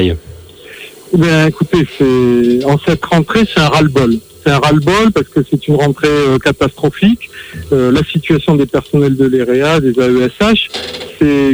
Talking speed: 155 wpm